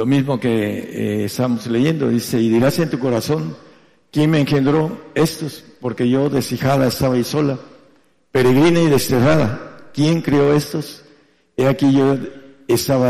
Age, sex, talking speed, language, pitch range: 60-79, male, 145 wpm, German, 105-140 Hz